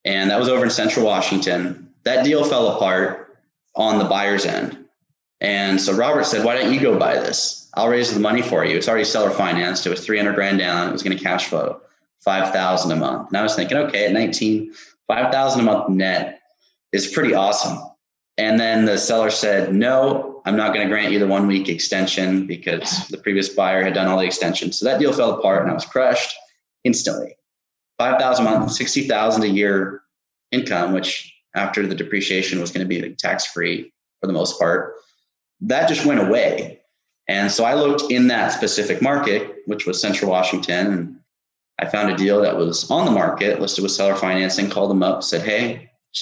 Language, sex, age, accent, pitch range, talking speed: English, male, 20-39, American, 95-110 Hz, 200 wpm